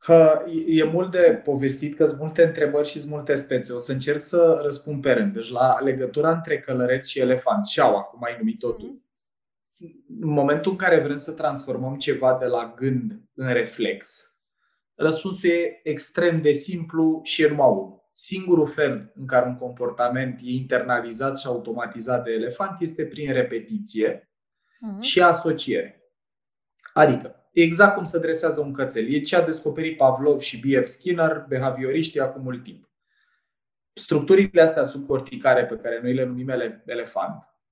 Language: Romanian